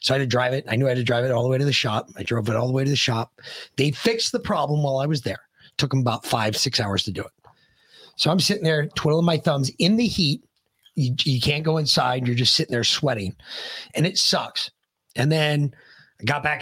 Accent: American